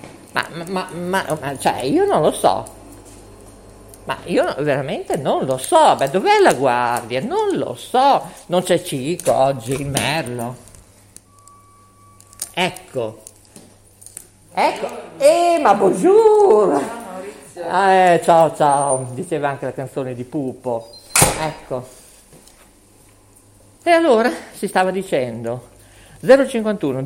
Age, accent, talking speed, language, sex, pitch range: 50-69, native, 110 wpm, Italian, male, 125-195 Hz